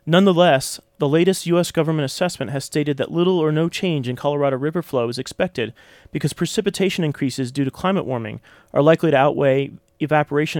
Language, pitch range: English, 135-175 Hz